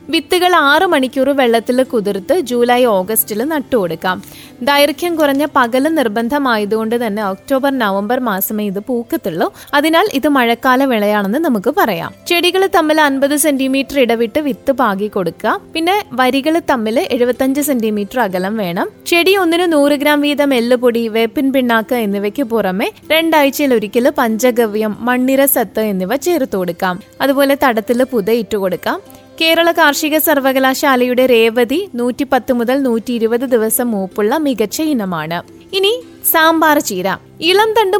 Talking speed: 130 wpm